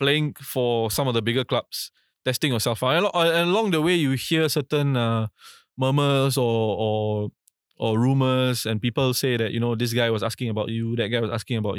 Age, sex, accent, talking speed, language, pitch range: 20-39, male, Malaysian, 200 wpm, English, 115-140 Hz